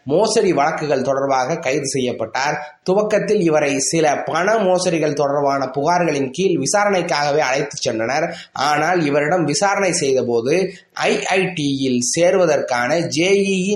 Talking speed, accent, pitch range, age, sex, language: 110 wpm, native, 150-195 Hz, 20-39, male, Tamil